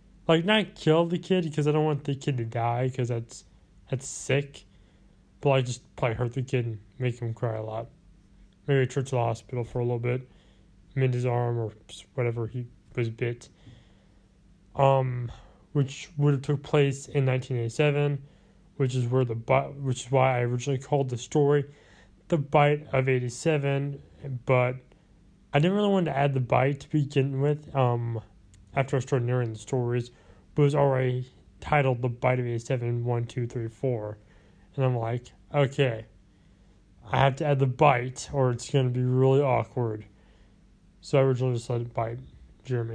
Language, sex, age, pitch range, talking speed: English, male, 20-39, 115-140 Hz, 175 wpm